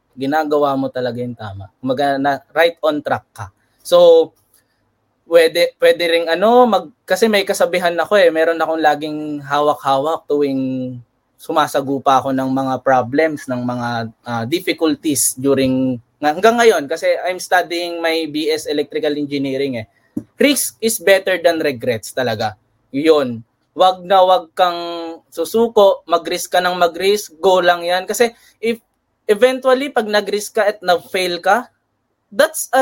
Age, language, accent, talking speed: 20-39, Filipino, native, 140 wpm